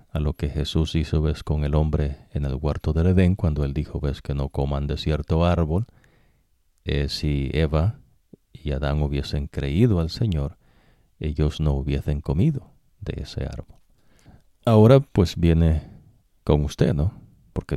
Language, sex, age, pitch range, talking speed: English, male, 40-59, 70-85 Hz, 160 wpm